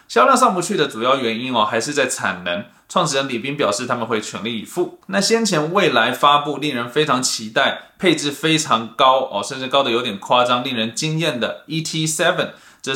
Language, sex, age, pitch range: Chinese, male, 20-39, 130-170 Hz